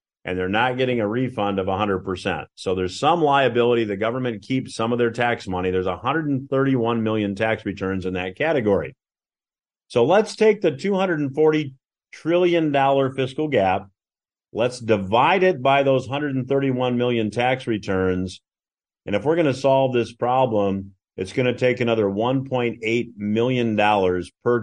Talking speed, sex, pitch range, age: 150 wpm, male, 100-135 Hz, 40-59